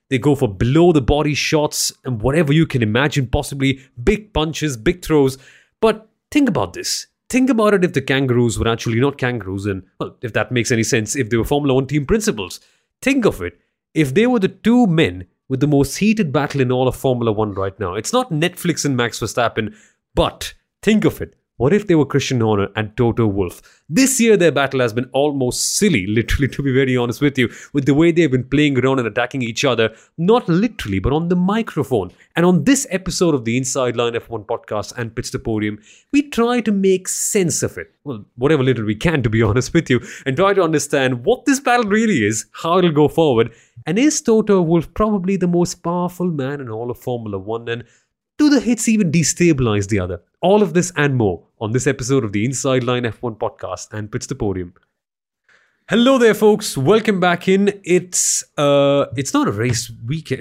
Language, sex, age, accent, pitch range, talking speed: English, male, 30-49, Indian, 120-180 Hz, 210 wpm